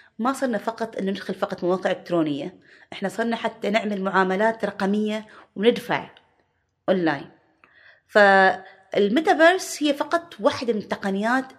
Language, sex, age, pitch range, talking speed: Arabic, female, 30-49, 180-240 Hz, 115 wpm